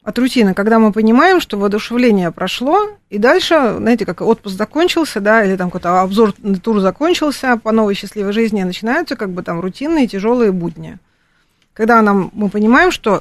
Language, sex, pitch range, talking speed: Russian, female, 195-240 Hz, 175 wpm